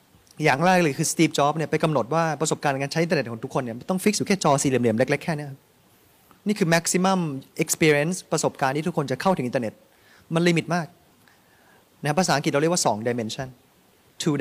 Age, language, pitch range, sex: 20-39, Thai, 130-170 Hz, male